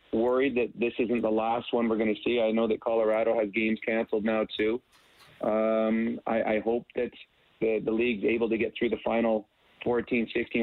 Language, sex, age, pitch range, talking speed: English, male, 30-49, 110-120 Hz, 205 wpm